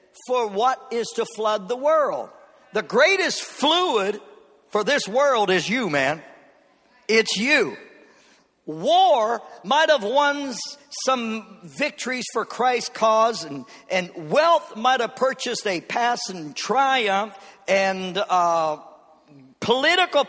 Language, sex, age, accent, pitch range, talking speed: English, male, 50-69, American, 210-280 Hz, 110 wpm